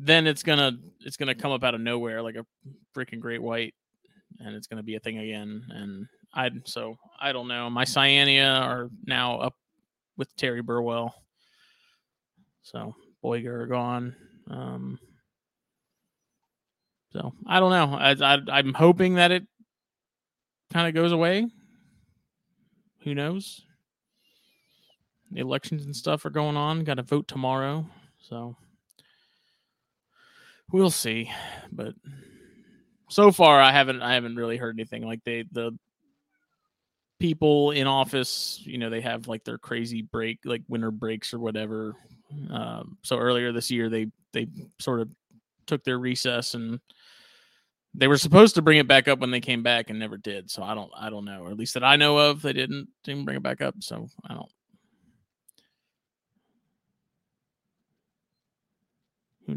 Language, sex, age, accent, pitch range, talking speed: English, male, 20-39, American, 115-155 Hz, 150 wpm